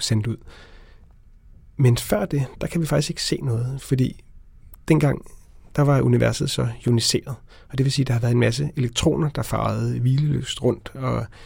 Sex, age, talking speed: male, 30-49, 185 wpm